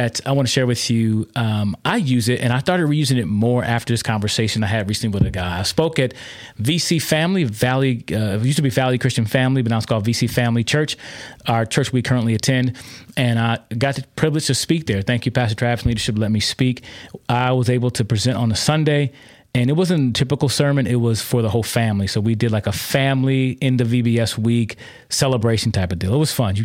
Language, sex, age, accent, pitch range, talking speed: English, male, 30-49, American, 110-135 Hz, 240 wpm